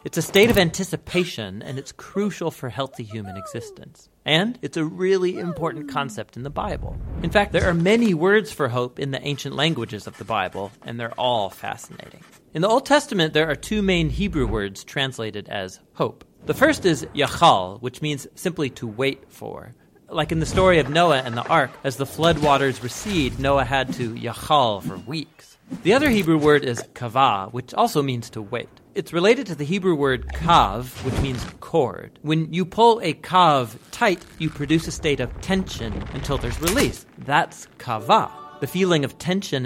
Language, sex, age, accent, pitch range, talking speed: English, male, 40-59, American, 125-170 Hz, 190 wpm